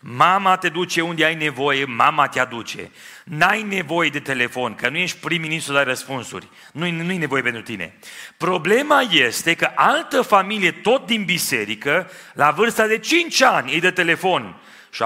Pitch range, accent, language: 125-170 Hz, native, Romanian